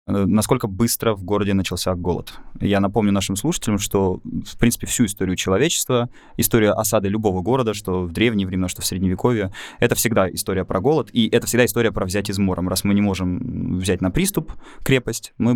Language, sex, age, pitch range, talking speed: Russian, male, 20-39, 95-120 Hz, 185 wpm